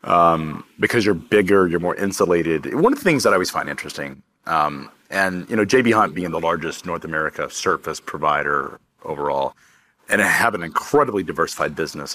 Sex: male